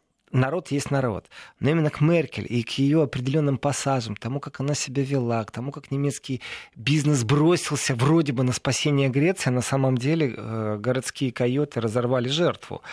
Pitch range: 125-160 Hz